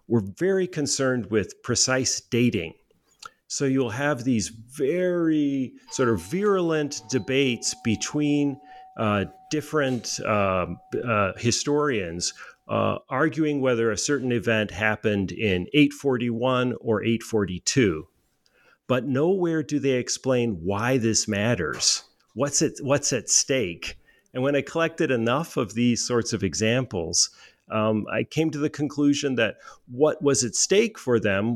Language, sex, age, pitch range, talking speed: English, male, 40-59, 115-150 Hz, 130 wpm